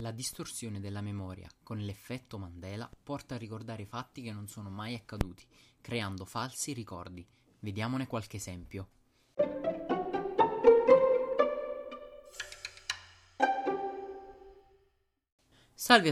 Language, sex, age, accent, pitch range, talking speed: Italian, male, 20-39, native, 110-145 Hz, 85 wpm